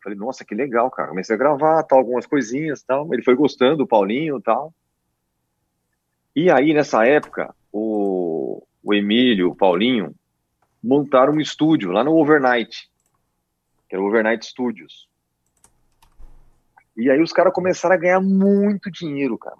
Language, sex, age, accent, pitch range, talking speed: Portuguese, male, 40-59, Brazilian, 110-155 Hz, 145 wpm